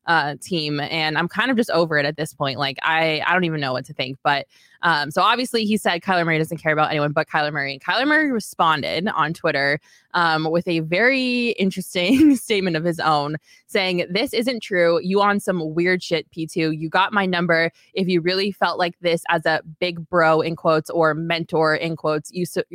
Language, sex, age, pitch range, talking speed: English, female, 20-39, 155-185 Hz, 220 wpm